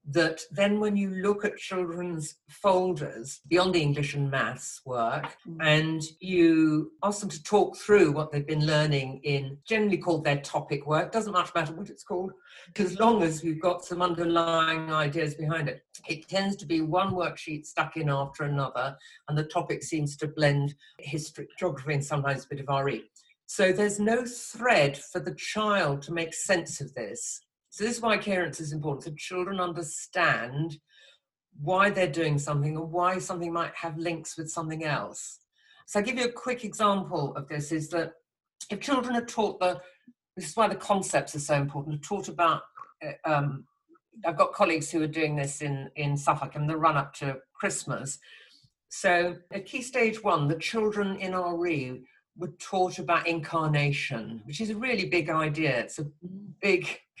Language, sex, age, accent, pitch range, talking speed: English, female, 50-69, British, 150-190 Hz, 180 wpm